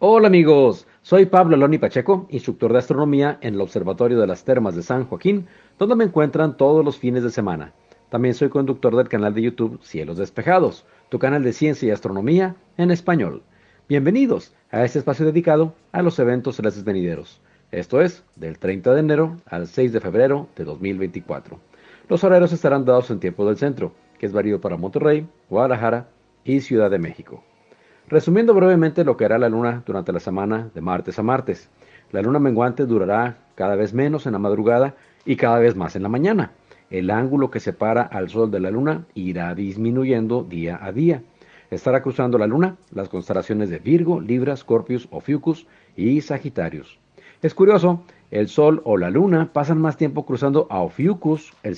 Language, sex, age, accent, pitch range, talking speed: Spanish, male, 50-69, Mexican, 105-155 Hz, 180 wpm